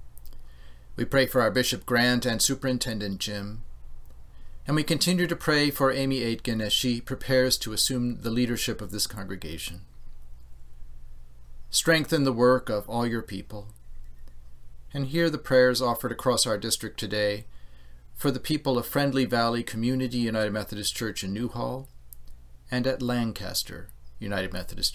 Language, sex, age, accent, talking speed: English, male, 40-59, American, 145 wpm